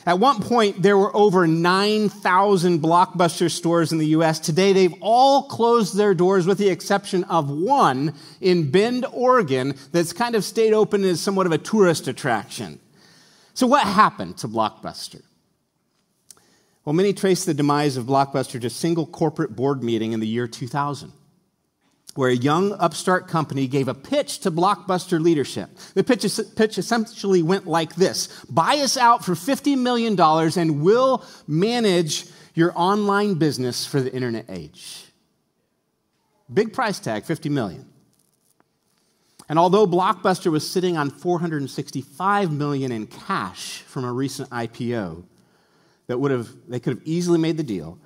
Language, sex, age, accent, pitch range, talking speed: English, male, 40-59, American, 150-200 Hz, 150 wpm